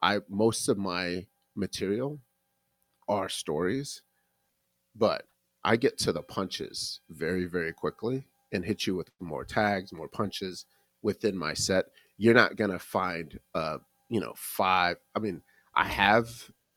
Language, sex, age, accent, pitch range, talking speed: English, male, 30-49, American, 90-115 Hz, 140 wpm